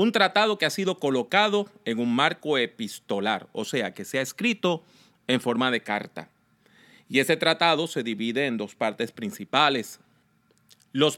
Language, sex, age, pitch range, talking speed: English, male, 40-59, 120-195 Hz, 160 wpm